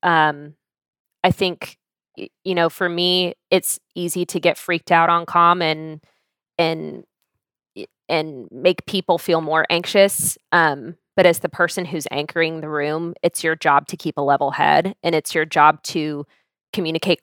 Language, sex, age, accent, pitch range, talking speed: English, female, 20-39, American, 155-180 Hz, 160 wpm